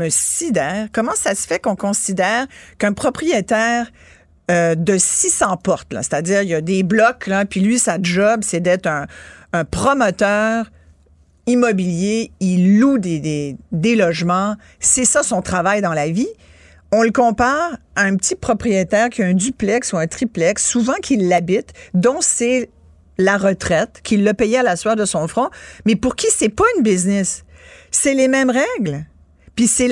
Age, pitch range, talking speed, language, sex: 50-69, 170-230 Hz, 175 wpm, French, female